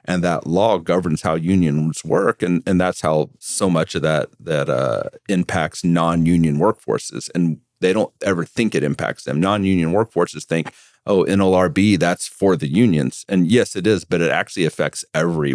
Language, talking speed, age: English, 180 wpm, 40-59